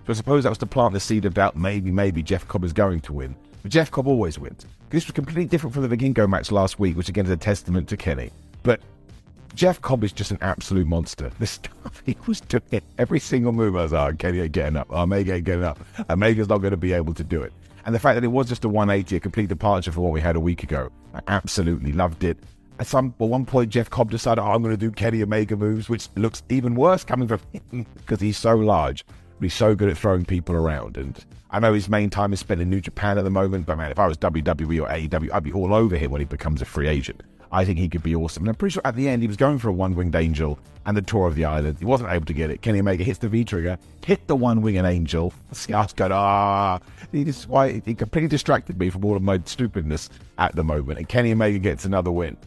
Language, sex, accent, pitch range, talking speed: English, male, British, 85-115 Hz, 270 wpm